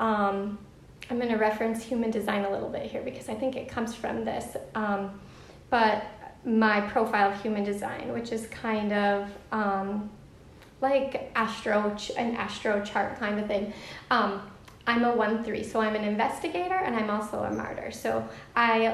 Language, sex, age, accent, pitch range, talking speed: English, female, 30-49, American, 215-265 Hz, 170 wpm